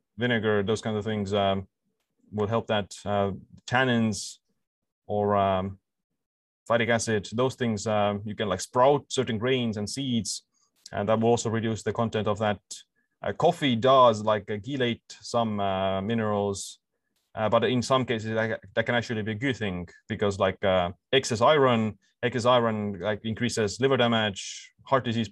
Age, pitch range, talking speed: 20-39, 100-120 Hz, 165 wpm